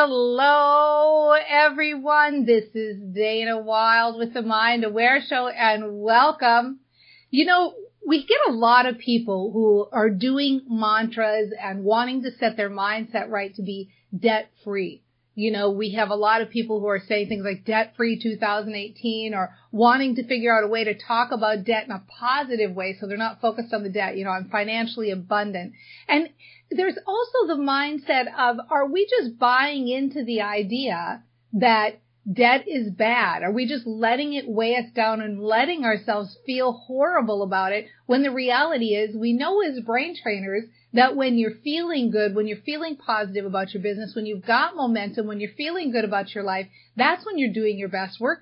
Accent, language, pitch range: American, English, 210-265 Hz